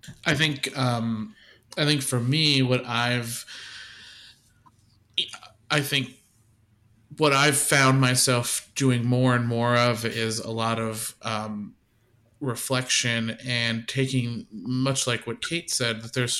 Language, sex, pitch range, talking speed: English, male, 115-130 Hz, 130 wpm